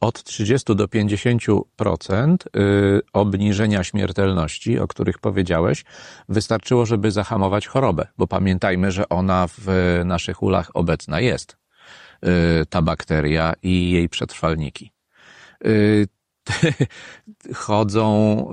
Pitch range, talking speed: 90-110 Hz, 90 wpm